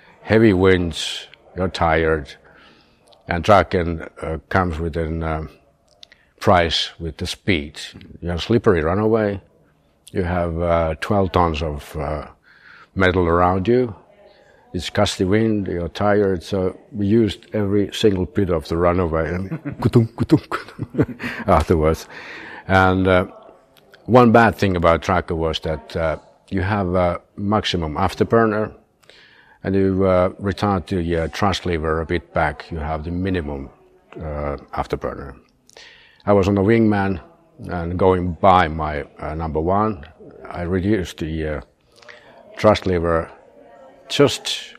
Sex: male